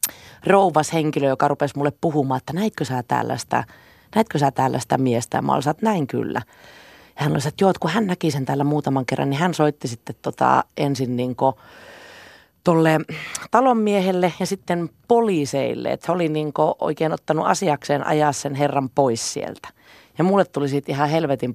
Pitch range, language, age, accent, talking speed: 135-160 Hz, Finnish, 30-49, native, 160 wpm